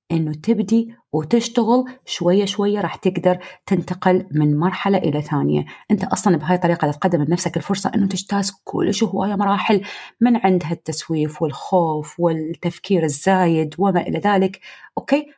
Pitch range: 170-210 Hz